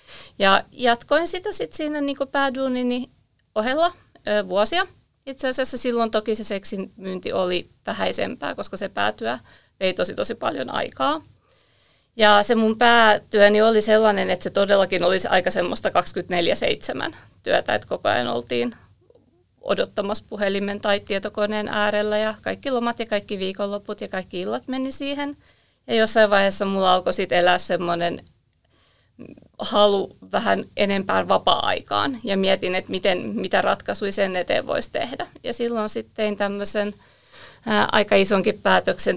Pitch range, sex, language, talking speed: 195-235 Hz, female, Finnish, 140 wpm